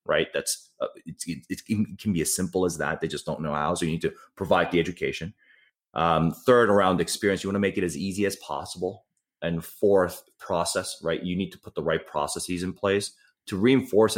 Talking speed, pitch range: 215 wpm, 85-110 Hz